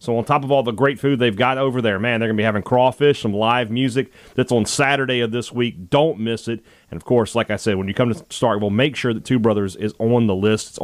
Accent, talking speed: American, 290 wpm